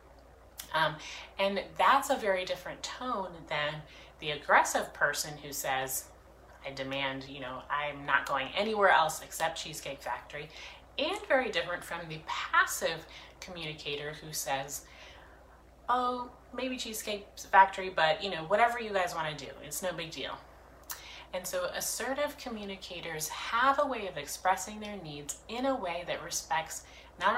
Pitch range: 150-200 Hz